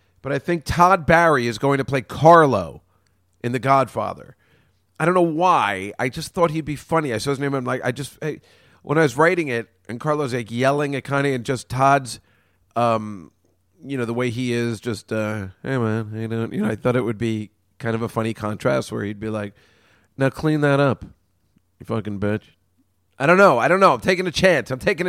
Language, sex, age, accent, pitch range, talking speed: English, male, 40-59, American, 110-160 Hz, 225 wpm